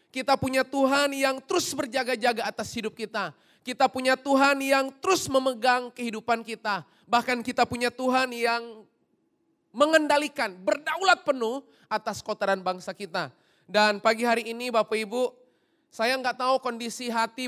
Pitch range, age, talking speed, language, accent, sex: 210-250 Hz, 20-39, 135 wpm, Indonesian, native, male